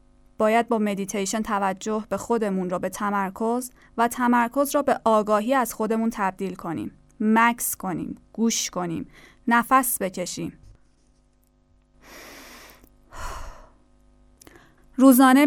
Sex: female